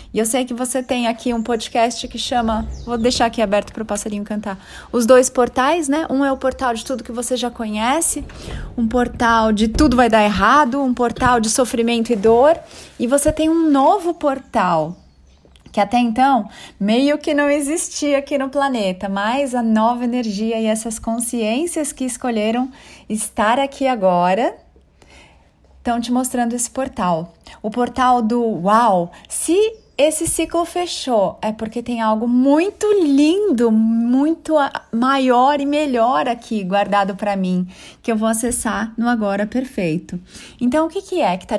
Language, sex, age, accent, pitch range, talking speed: Portuguese, female, 20-39, Brazilian, 220-275 Hz, 165 wpm